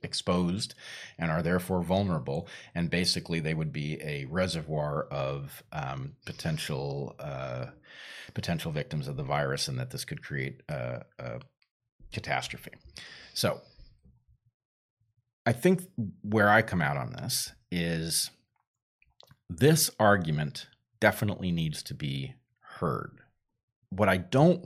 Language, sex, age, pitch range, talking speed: English, male, 40-59, 85-120 Hz, 120 wpm